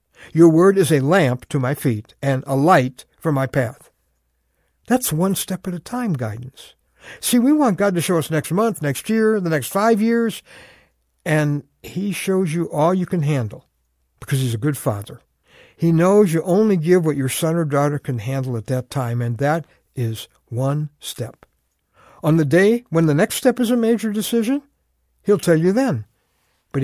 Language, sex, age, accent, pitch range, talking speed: English, male, 60-79, American, 130-200 Hz, 190 wpm